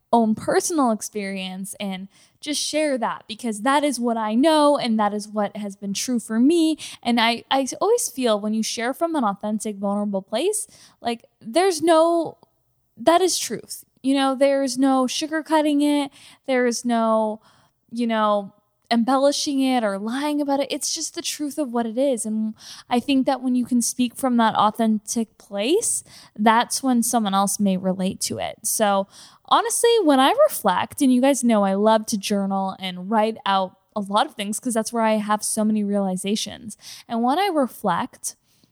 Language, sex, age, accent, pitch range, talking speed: English, female, 10-29, American, 205-260 Hz, 185 wpm